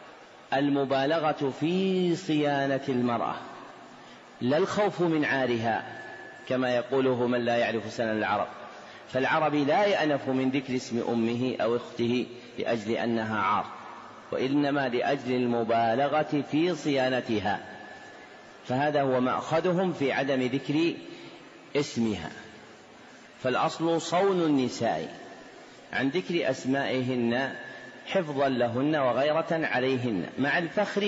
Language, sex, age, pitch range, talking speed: Arabic, male, 40-59, 125-155 Hz, 100 wpm